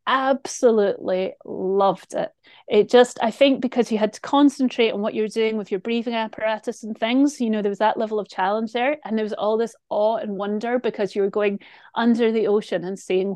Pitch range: 205-245 Hz